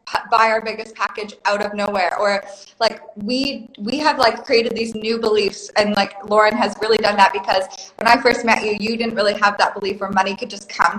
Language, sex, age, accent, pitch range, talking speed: English, female, 20-39, American, 205-240 Hz, 225 wpm